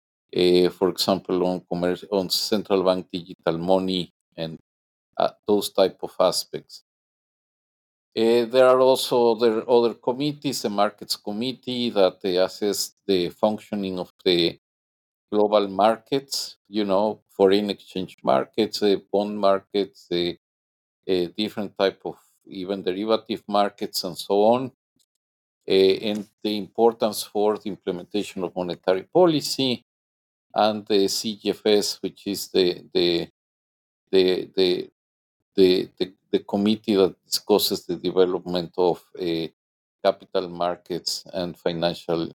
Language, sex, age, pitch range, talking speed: English, male, 50-69, 90-110 Hz, 115 wpm